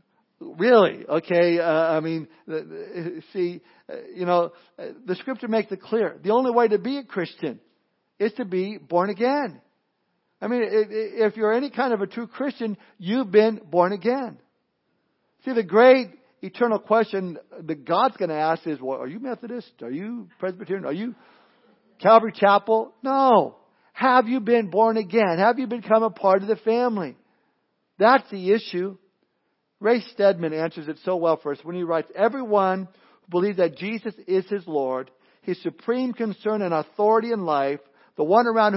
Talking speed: 165 wpm